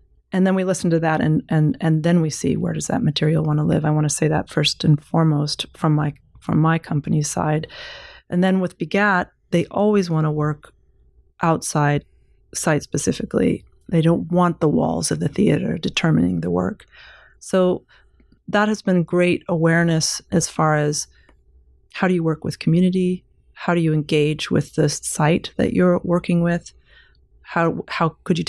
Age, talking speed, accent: 30-49, 180 wpm, American